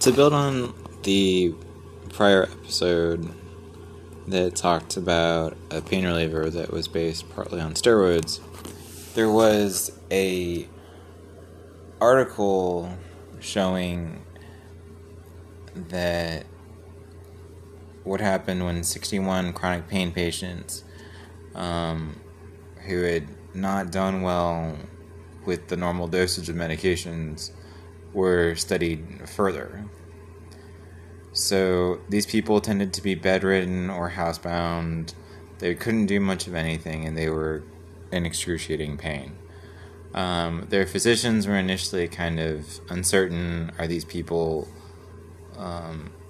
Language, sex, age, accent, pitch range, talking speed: English, male, 20-39, American, 80-95 Hz, 100 wpm